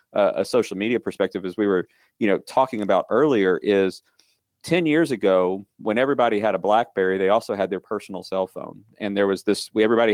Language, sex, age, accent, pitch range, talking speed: English, male, 40-59, American, 100-130 Hz, 205 wpm